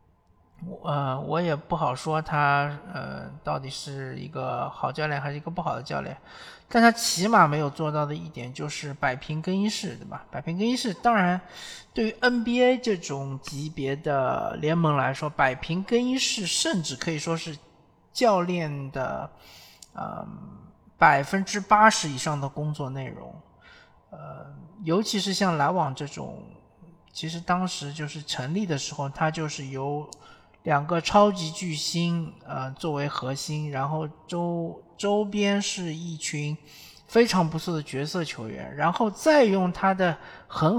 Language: Chinese